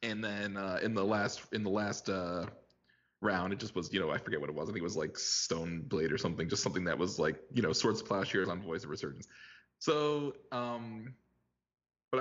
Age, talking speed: 20-39, 230 wpm